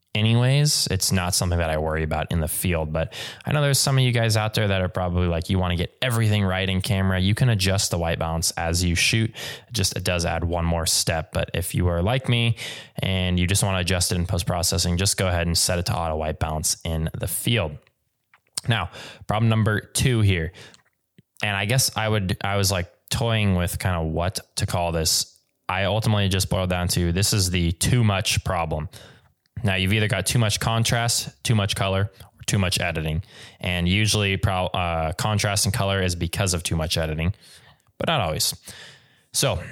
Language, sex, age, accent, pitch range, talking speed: English, male, 20-39, American, 85-110 Hz, 210 wpm